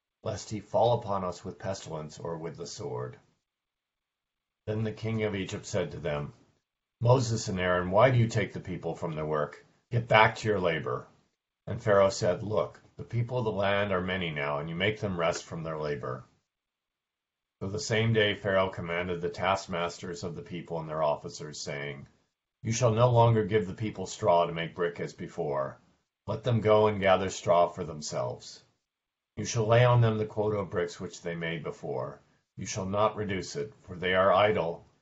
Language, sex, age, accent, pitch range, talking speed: English, male, 50-69, American, 85-110 Hz, 195 wpm